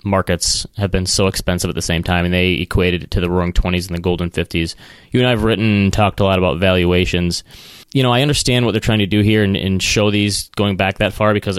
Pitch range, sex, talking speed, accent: 90-105 Hz, male, 265 wpm, American